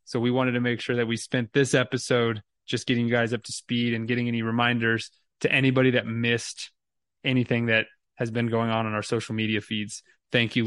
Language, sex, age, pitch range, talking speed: English, male, 20-39, 120-145 Hz, 220 wpm